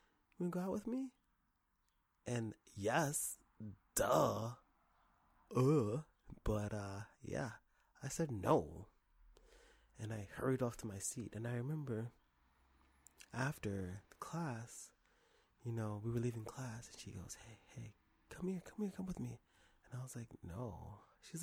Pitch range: 105-140 Hz